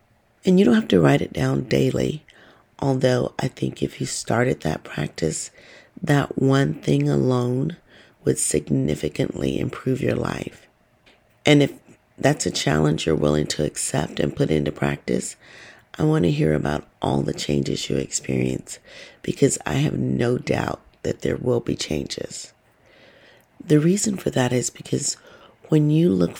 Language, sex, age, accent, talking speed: English, female, 40-59, American, 155 wpm